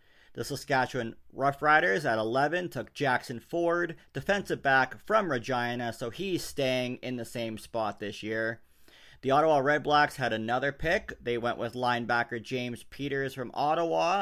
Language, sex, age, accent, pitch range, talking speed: English, male, 40-59, American, 120-155 Hz, 150 wpm